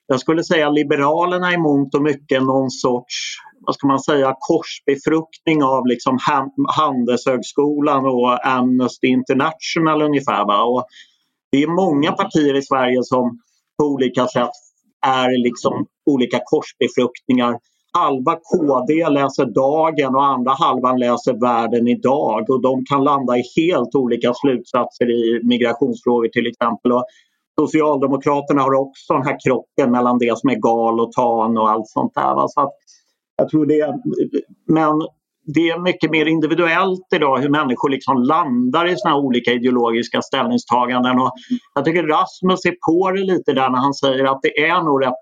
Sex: male